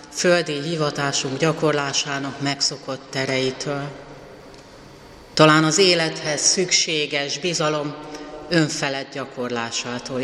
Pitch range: 140-165 Hz